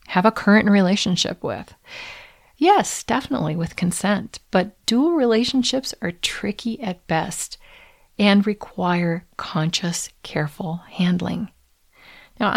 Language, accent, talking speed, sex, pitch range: English, American, 105 wpm, female, 175-225 Hz